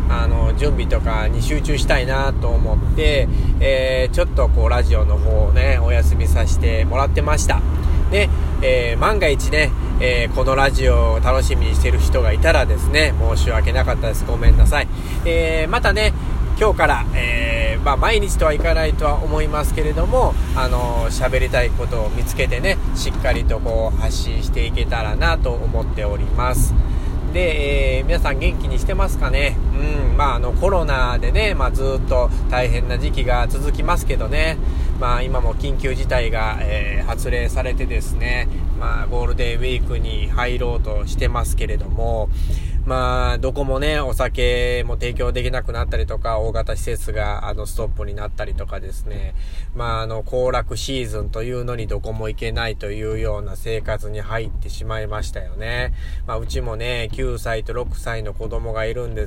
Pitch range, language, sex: 65-110 Hz, Japanese, male